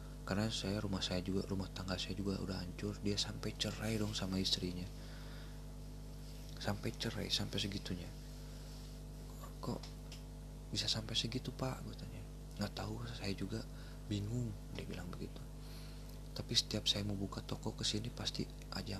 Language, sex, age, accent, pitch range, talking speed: Indonesian, male, 20-39, native, 90-115 Hz, 140 wpm